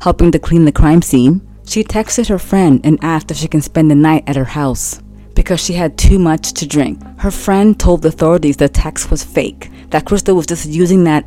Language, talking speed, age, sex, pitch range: English, 230 wpm, 30-49, female, 150-195 Hz